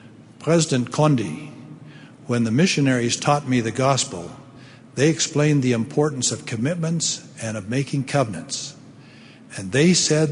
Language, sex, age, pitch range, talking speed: English, male, 60-79, 120-150 Hz, 130 wpm